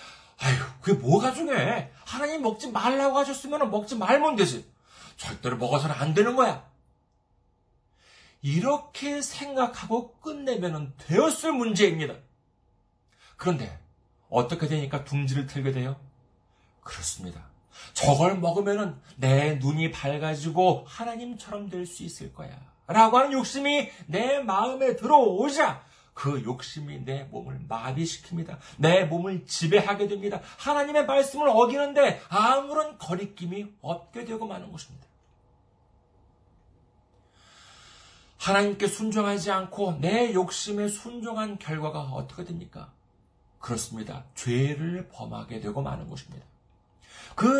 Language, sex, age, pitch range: Korean, male, 40-59, 130-205 Hz